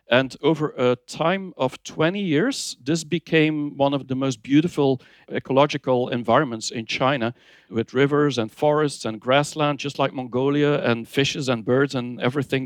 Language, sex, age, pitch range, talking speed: English, male, 50-69, 125-145 Hz, 155 wpm